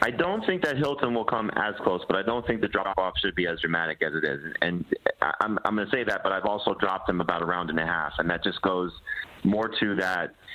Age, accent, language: 30-49, American, English